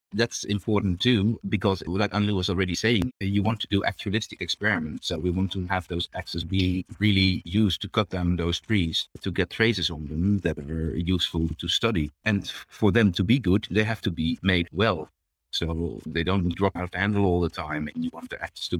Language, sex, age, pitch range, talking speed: English, male, 50-69, 85-105 Hz, 220 wpm